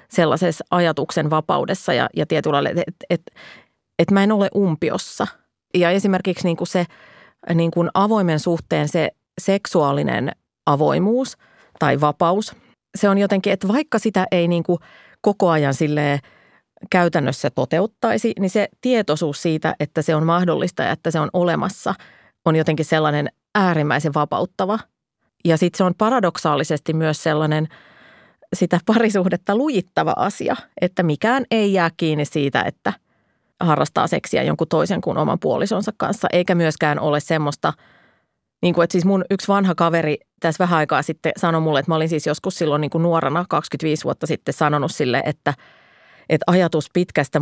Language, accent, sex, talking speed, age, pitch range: Finnish, native, female, 150 wpm, 30-49, 155-185 Hz